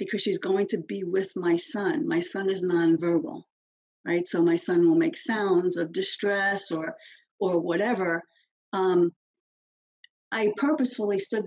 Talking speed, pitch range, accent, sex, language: 145 wpm, 170-260 Hz, American, female, English